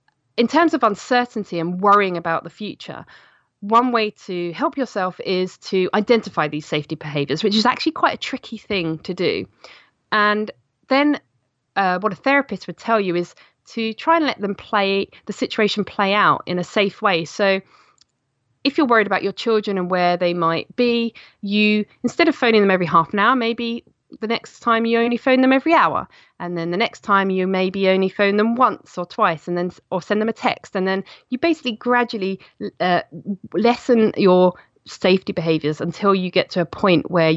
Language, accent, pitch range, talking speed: English, British, 170-225 Hz, 195 wpm